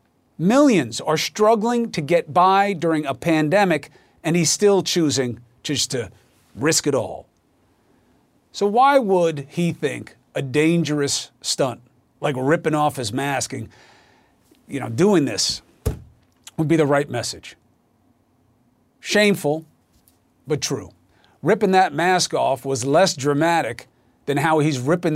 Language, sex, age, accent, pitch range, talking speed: English, male, 40-59, American, 135-175 Hz, 130 wpm